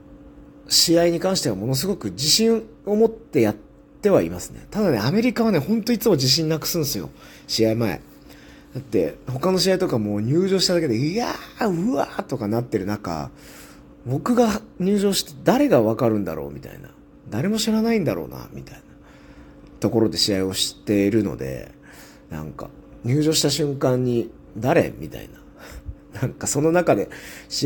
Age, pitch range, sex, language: 40-59, 105-170 Hz, male, Japanese